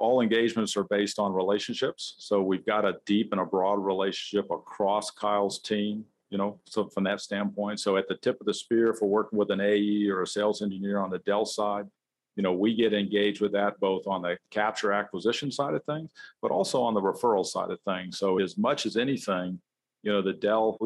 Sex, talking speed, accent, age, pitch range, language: male, 220 wpm, American, 50-69, 100-110 Hz, English